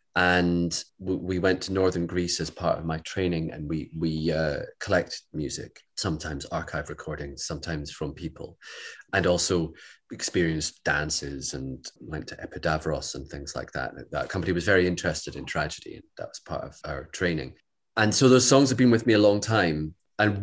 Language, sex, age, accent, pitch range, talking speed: English, male, 30-49, British, 80-100 Hz, 180 wpm